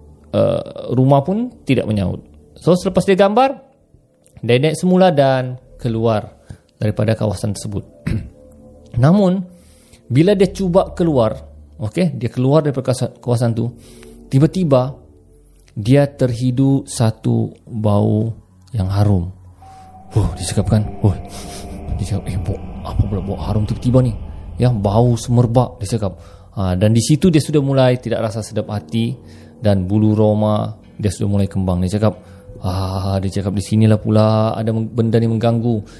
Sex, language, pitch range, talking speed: male, Malay, 100-135 Hz, 135 wpm